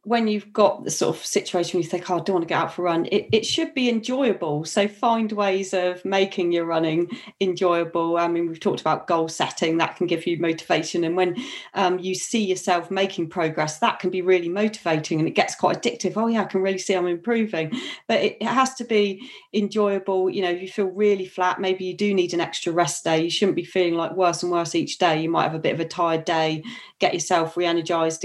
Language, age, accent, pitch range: English, 40-59, British, 170-210 Hz